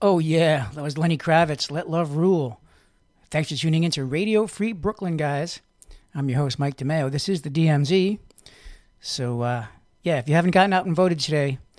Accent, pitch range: American, 140-175 Hz